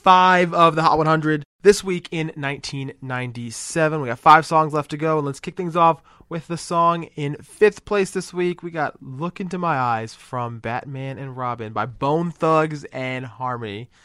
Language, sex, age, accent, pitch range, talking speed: English, male, 20-39, American, 115-145 Hz, 185 wpm